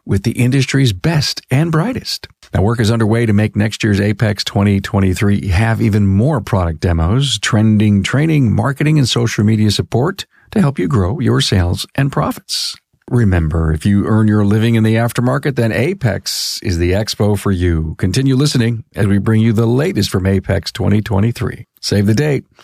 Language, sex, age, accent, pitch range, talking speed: English, male, 50-69, American, 100-130 Hz, 175 wpm